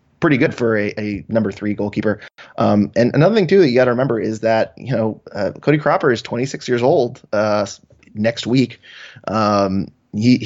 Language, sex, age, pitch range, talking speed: English, male, 20-39, 105-135 Hz, 190 wpm